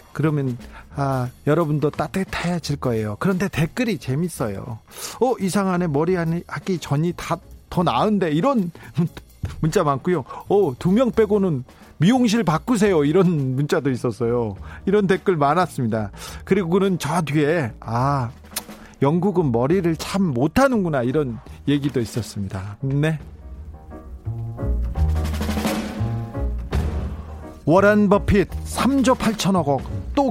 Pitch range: 120-185 Hz